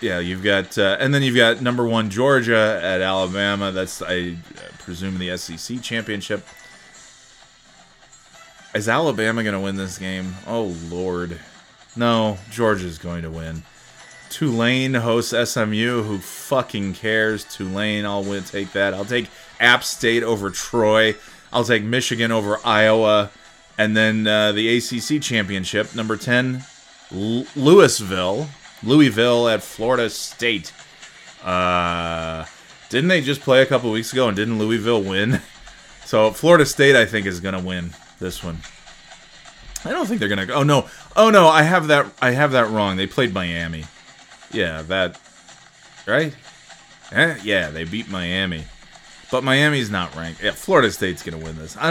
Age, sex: 30-49, male